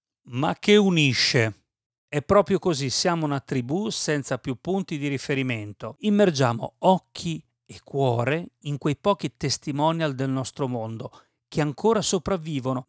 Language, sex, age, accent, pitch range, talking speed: Italian, male, 40-59, native, 125-160 Hz, 130 wpm